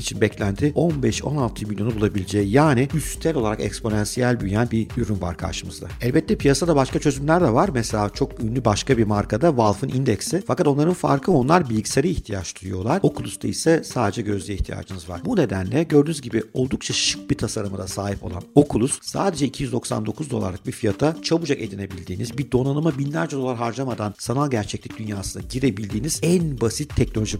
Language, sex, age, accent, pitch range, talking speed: Turkish, male, 50-69, native, 105-135 Hz, 160 wpm